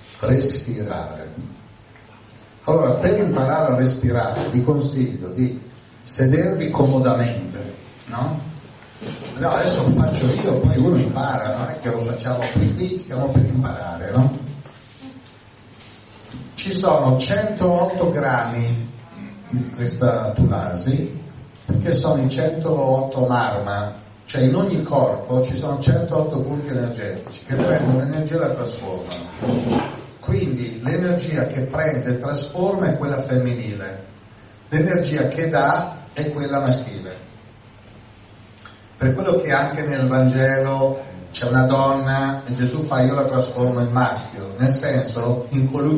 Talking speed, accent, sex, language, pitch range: 125 wpm, native, male, Italian, 115-140 Hz